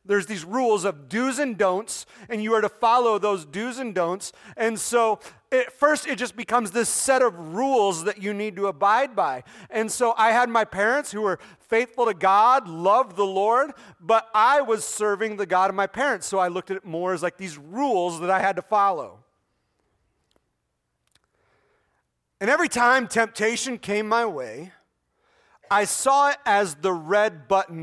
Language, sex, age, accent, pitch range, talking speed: English, male, 30-49, American, 195-250 Hz, 185 wpm